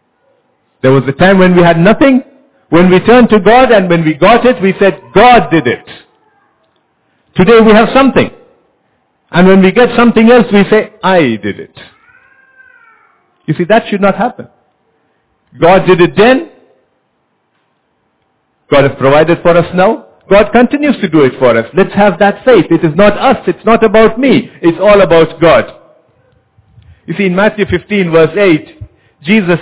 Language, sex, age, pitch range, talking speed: English, male, 50-69, 160-215 Hz, 170 wpm